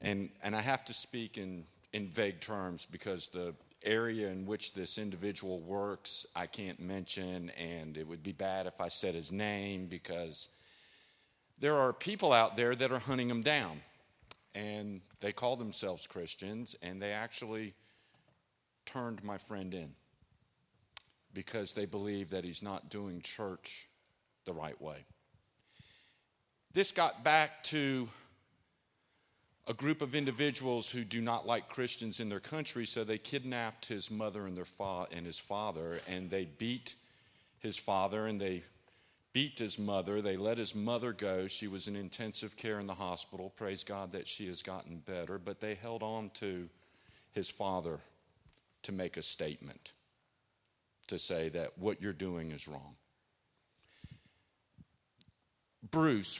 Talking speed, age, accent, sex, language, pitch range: 150 wpm, 50-69, American, male, English, 95-115 Hz